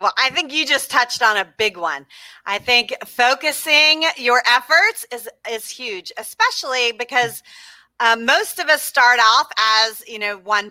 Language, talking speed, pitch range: English, 170 wpm, 215-290 Hz